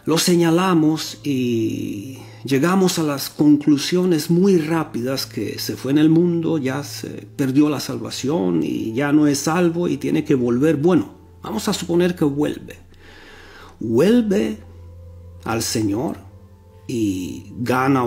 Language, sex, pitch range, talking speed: Romanian, male, 110-175 Hz, 135 wpm